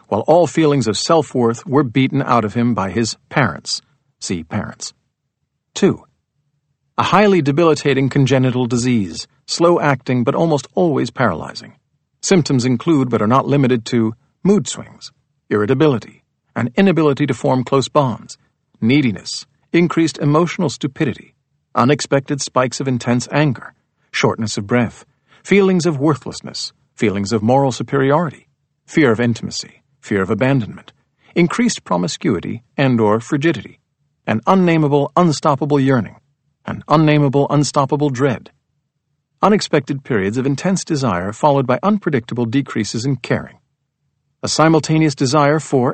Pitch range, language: 125-150 Hz, English